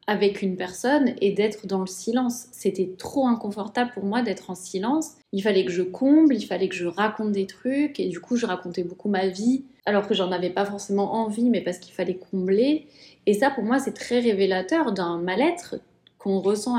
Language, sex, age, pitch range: French, female, 30-49, 190-255 Hz